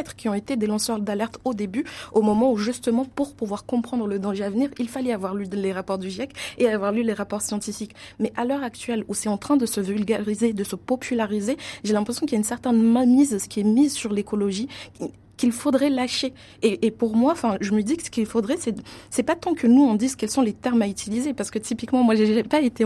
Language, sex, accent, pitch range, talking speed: French, female, French, 210-255 Hz, 255 wpm